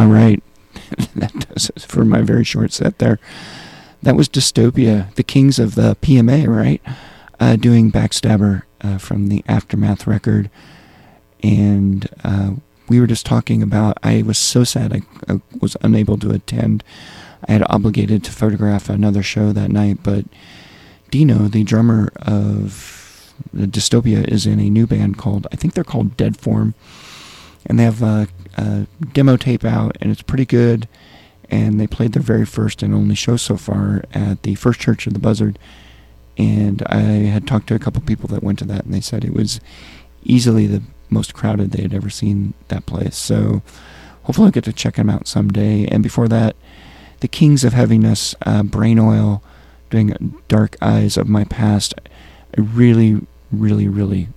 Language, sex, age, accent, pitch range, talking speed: English, male, 40-59, American, 100-115 Hz, 175 wpm